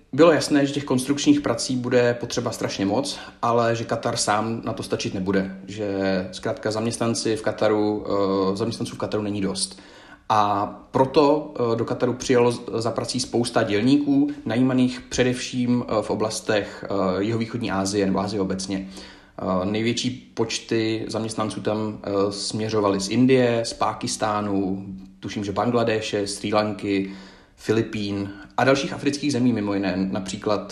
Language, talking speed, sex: Czech, 135 wpm, male